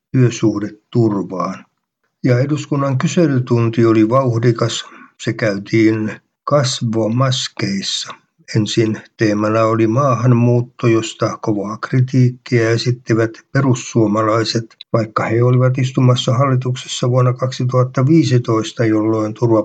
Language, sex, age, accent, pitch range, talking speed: Finnish, male, 60-79, native, 110-125 Hz, 75 wpm